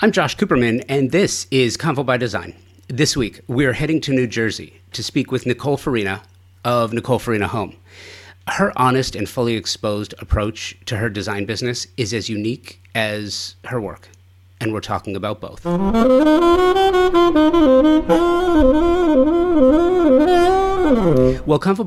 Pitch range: 95-130 Hz